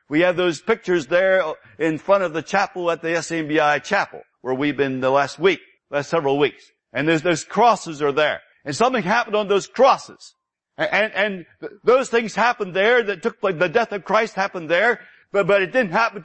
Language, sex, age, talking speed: English, male, 60-79, 220 wpm